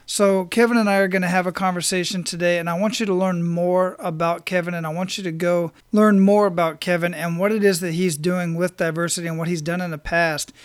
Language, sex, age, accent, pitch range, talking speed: English, male, 40-59, American, 175-195 Hz, 260 wpm